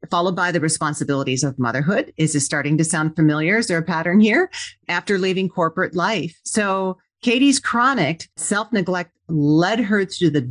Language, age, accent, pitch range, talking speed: English, 40-59, American, 155-195 Hz, 165 wpm